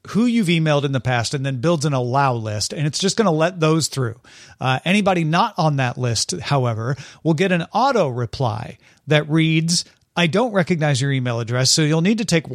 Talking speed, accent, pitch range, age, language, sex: 215 wpm, American, 130-180 Hz, 40-59, English, male